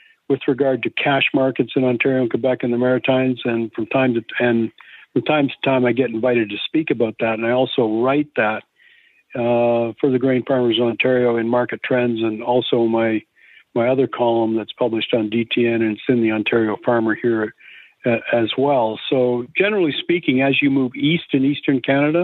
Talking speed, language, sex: 195 wpm, English, male